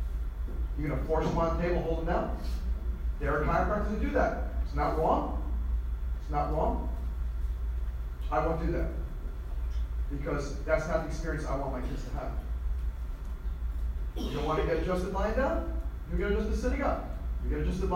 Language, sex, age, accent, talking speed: English, male, 40-59, American, 180 wpm